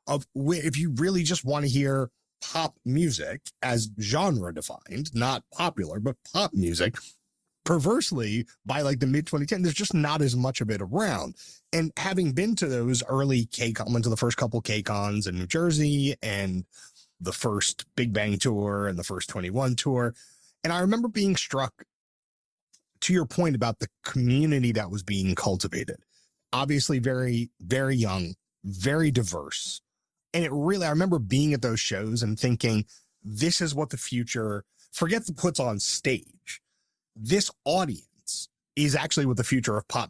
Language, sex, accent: English, male, American